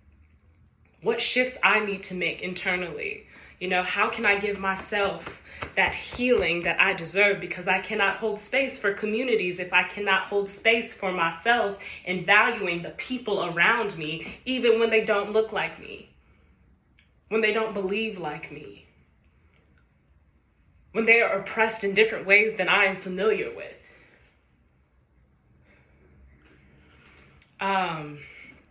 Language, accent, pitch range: English, American, 170-220 Hz